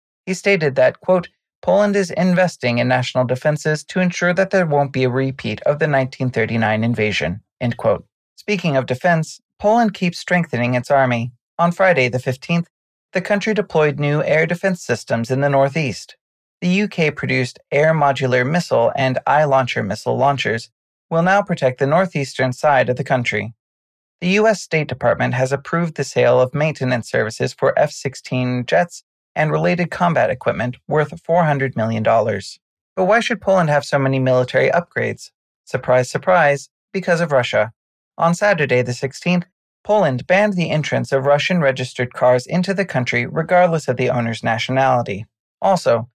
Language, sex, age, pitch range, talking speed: English, male, 30-49, 125-175 Hz, 155 wpm